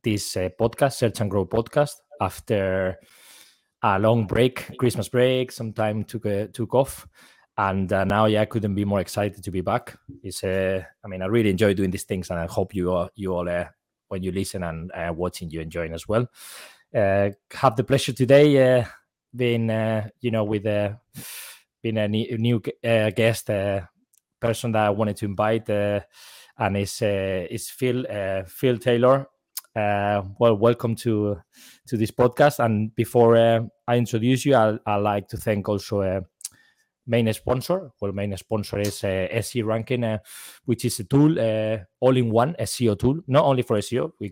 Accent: Spanish